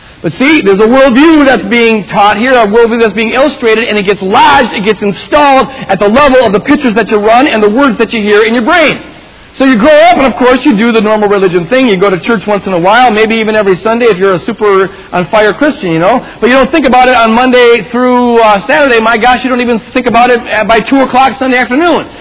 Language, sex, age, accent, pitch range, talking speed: English, male, 40-59, American, 215-290 Hz, 260 wpm